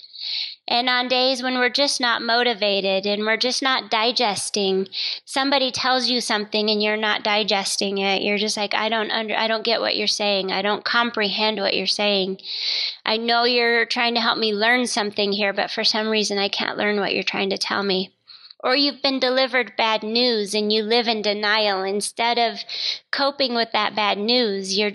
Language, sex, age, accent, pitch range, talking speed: English, female, 20-39, American, 210-250 Hz, 195 wpm